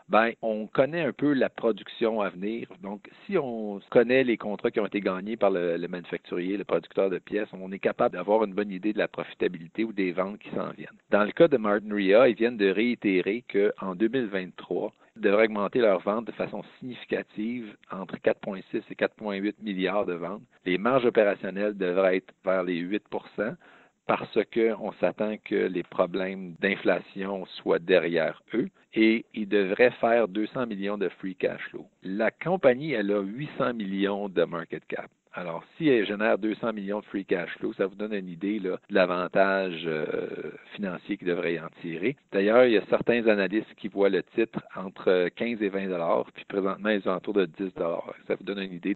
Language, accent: French, Canadian